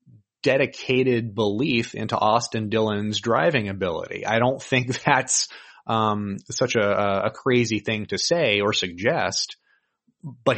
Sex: male